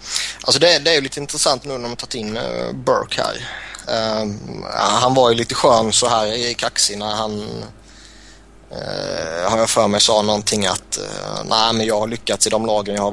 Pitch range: 105-115 Hz